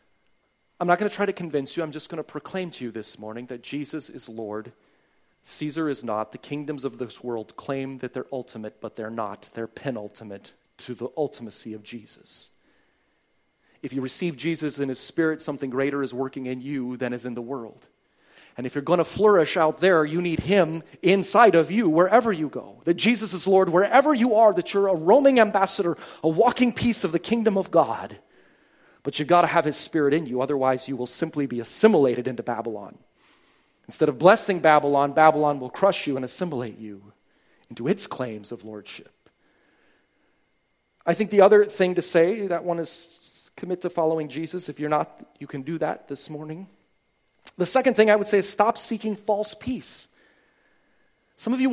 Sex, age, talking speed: male, 30-49, 195 wpm